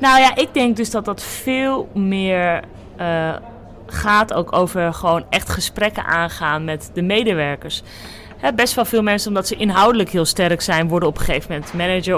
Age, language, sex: 30-49, Dutch, female